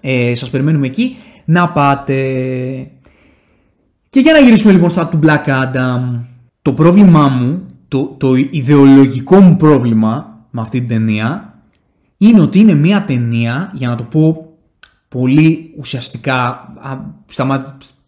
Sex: male